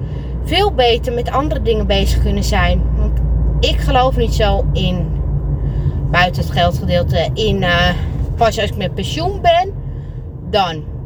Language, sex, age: Dutch, female, 20-39